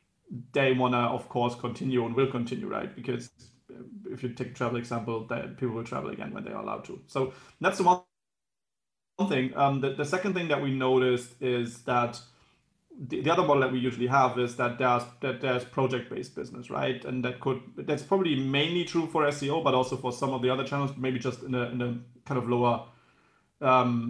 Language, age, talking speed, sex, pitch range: Slovak, 30-49, 210 wpm, male, 125-140 Hz